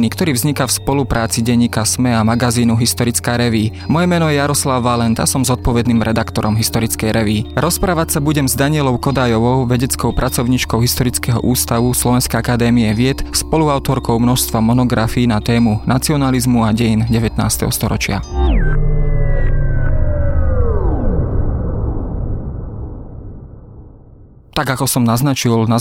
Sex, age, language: male, 20-39, Slovak